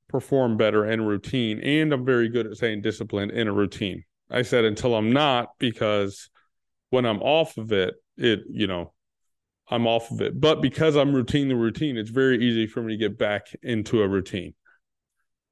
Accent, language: American, English